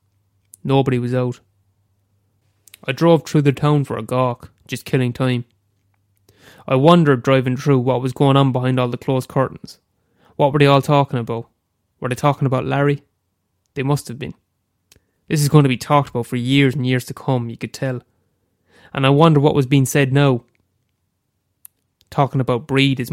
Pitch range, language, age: 115-140 Hz, English, 20-39